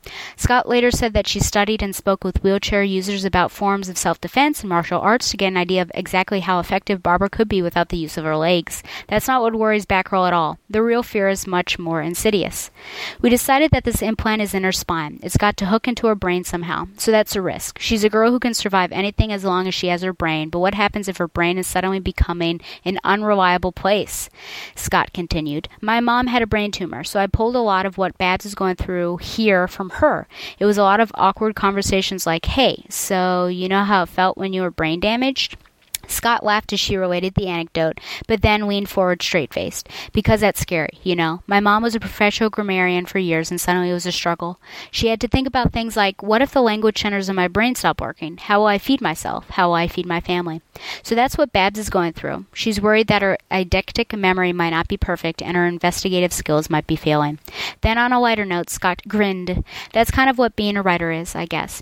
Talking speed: 230 wpm